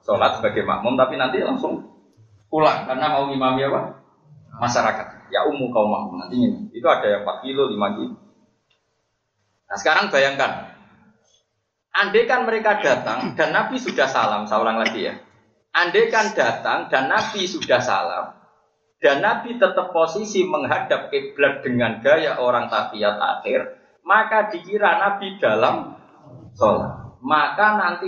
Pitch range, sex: 130-220 Hz, male